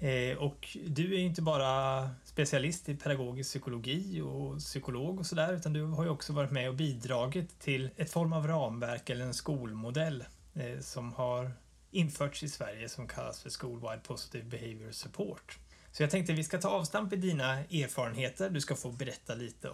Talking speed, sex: 175 wpm, male